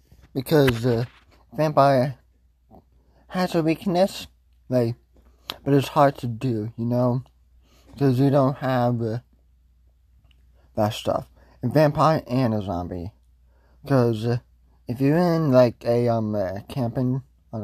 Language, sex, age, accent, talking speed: English, male, 20-39, American, 125 wpm